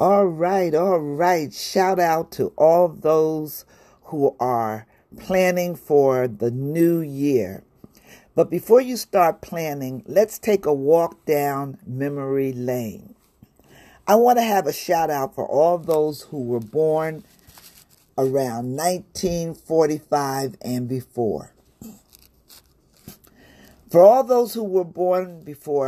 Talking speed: 120 wpm